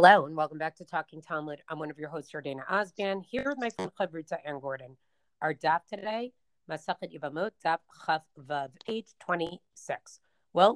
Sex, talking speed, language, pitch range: female, 180 wpm, English, 160-200 Hz